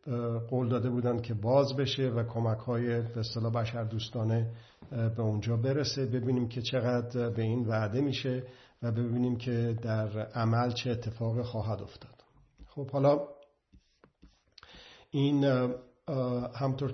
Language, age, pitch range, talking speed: Persian, 50-69, 115-135 Hz, 120 wpm